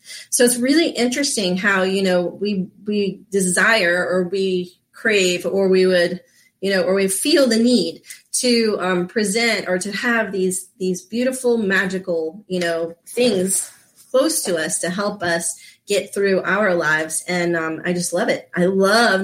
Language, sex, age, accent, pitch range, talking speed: English, female, 30-49, American, 175-215 Hz, 170 wpm